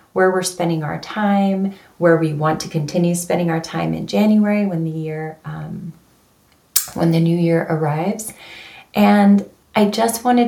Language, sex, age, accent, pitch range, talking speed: English, female, 30-49, American, 155-180 Hz, 160 wpm